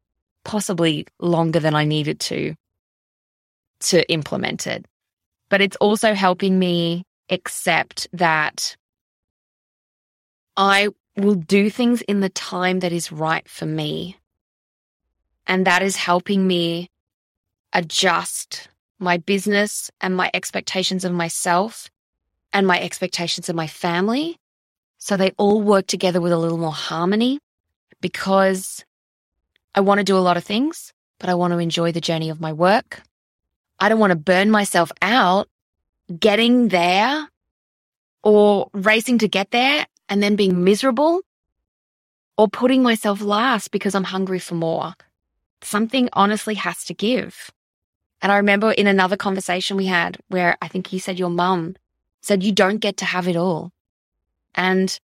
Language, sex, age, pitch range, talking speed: English, female, 20-39, 170-205 Hz, 145 wpm